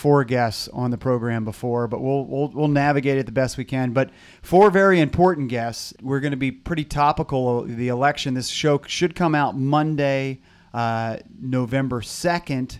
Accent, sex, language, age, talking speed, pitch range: American, male, English, 30-49, 180 wpm, 115-140 Hz